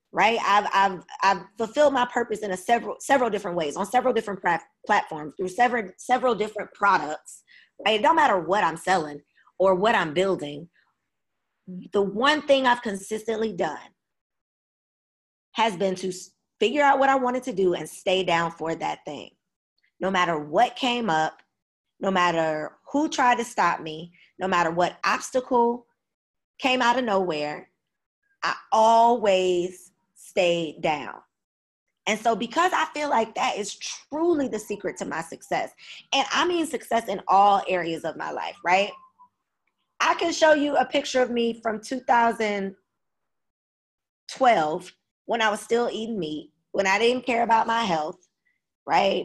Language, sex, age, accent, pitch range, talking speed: English, female, 20-39, American, 180-245 Hz, 155 wpm